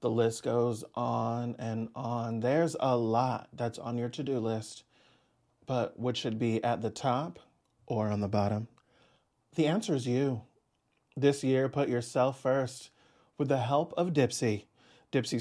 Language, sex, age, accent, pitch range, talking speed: English, male, 30-49, American, 120-145 Hz, 155 wpm